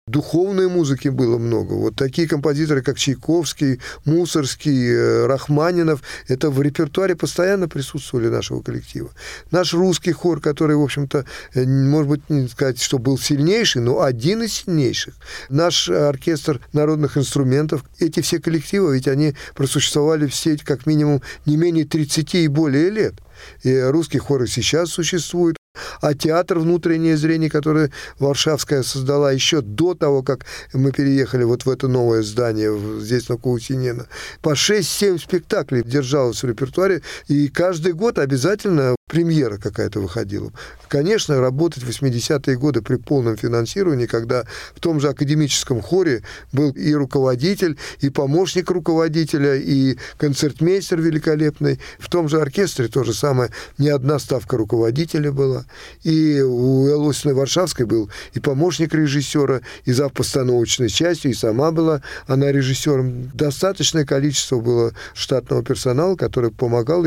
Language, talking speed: Russian, 135 wpm